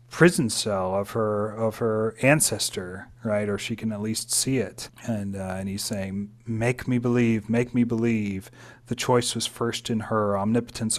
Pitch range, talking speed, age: 105-125 Hz, 180 wpm, 40-59